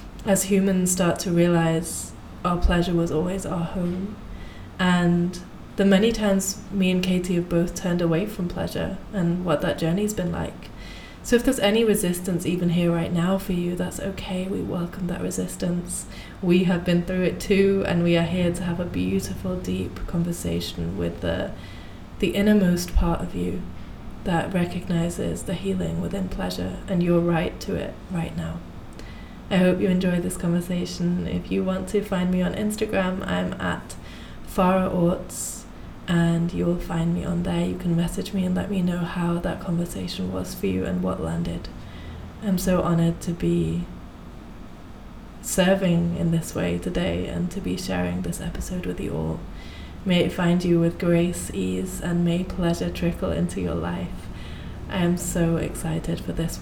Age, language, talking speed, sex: 20-39, English, 170 wpm, female